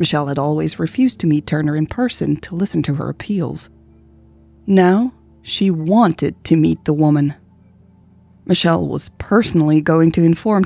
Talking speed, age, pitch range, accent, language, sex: 150 wpm, 20-39, 140-180 Hz, American, English, female